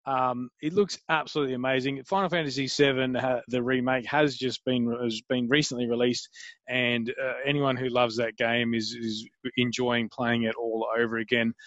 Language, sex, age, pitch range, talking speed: English, male, 20-39, 125-150 Hz, 165 wpm